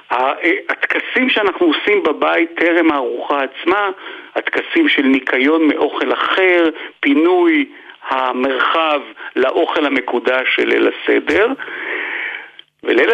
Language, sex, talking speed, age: Hebrew, male, 90 wpm, 60-79